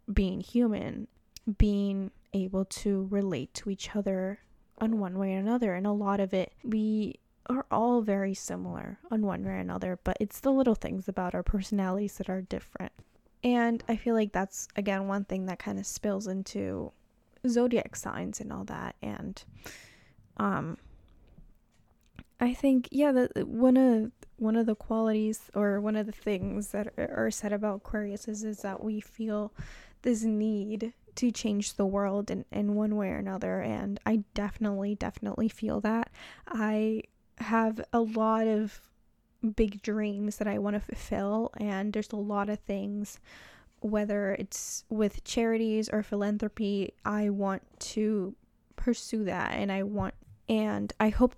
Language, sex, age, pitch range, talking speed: English, female, 10-29, 200-225 Hz, 160 wpm